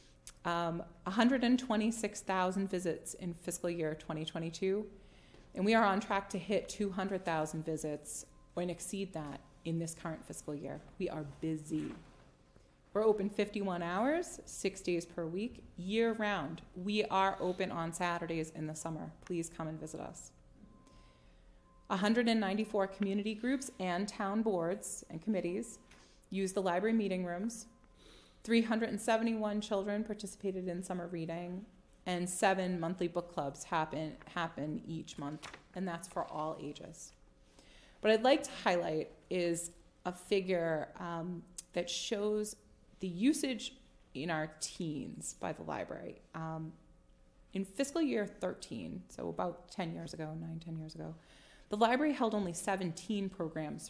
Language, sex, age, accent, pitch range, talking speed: English, female, 30-49, American, 160-205 Hz, 135 wpm